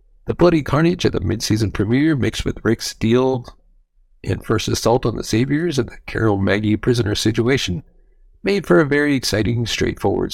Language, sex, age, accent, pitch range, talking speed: English, male, 60-79, American, 110-150 Hz, 170 wpm